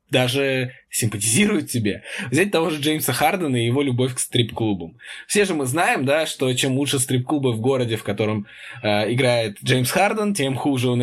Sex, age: male, 20-39